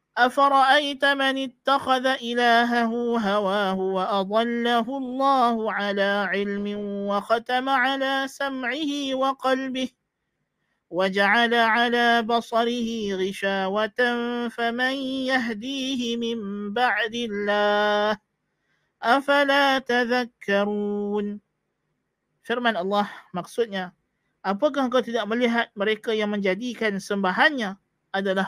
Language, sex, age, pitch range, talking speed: Malay, male, 50-69, 195-245 Hz, 75 wpm